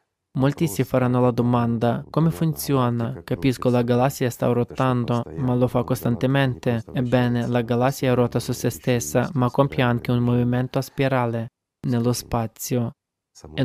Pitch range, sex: 120-130 Hz, male